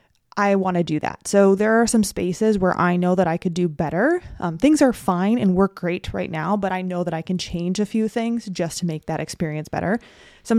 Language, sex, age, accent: English, female, 20-39, American